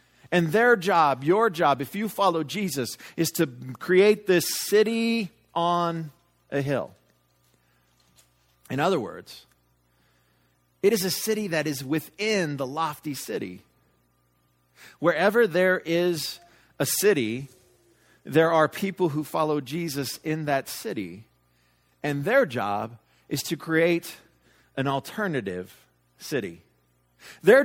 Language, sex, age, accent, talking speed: English, male, 50-69, American, 115 wpm